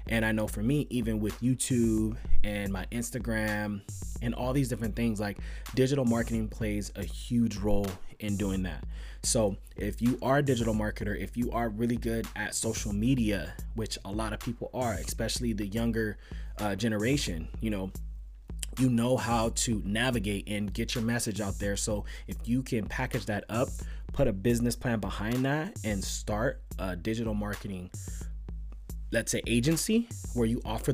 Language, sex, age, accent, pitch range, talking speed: English, male, 20-39, American, 100-120 Hz, 175 wpm